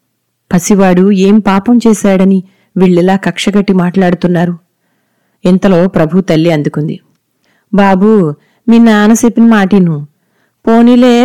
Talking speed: 90 wpm